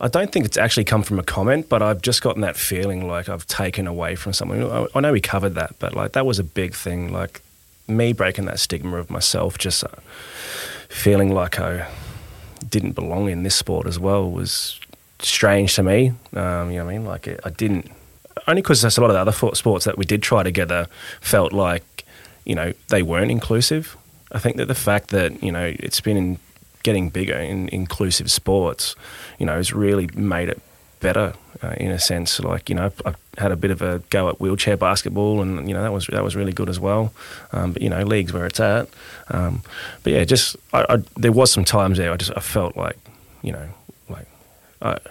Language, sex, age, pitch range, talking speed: English, male, 20-39, 90-105 Hz, 220 wpm